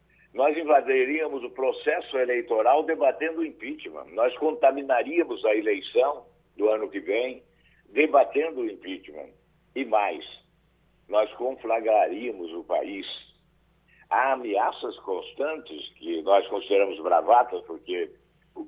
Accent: Brazilian